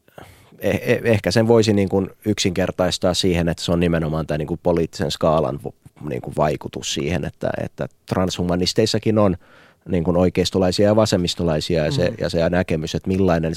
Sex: male